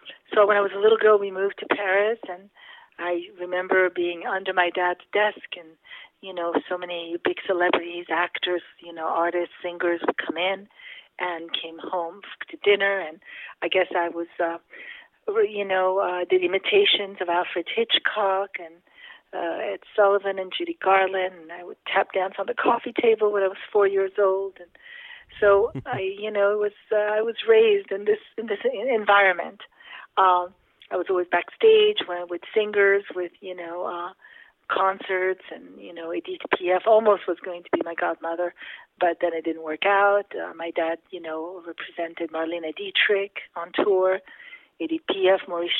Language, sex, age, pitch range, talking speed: English, female, 50-69, 175-215 Hz, 170 wpm